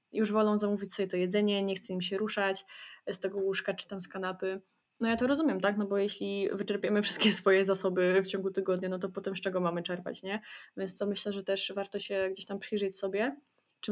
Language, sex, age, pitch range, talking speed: Polish, female, 20-39, 190-210 Hz, 230 wpm